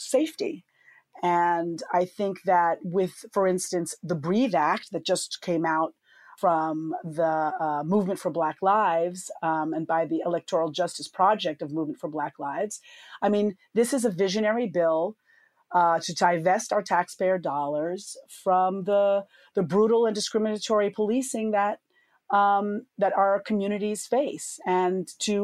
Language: English